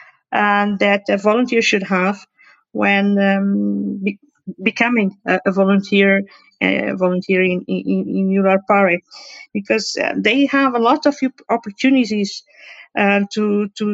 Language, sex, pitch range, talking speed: English, female, 205-240 Hz, 125 wpm